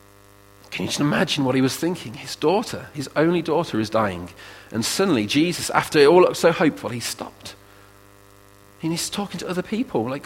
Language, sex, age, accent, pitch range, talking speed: English, male, 40-59, British, 100-130 Hz, 200 wpm